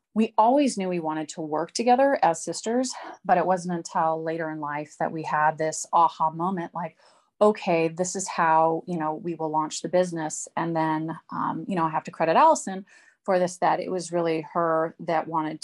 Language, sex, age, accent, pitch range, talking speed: English, female, 30-49, American, 160-185 Hz, 205 wpm